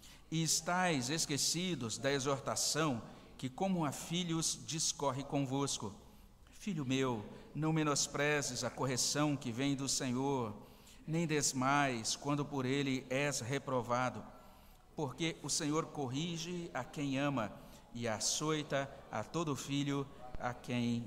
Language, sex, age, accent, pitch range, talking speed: Portuguese, male, 60-79, Brazilian, 115-140 Hz, 120 wpm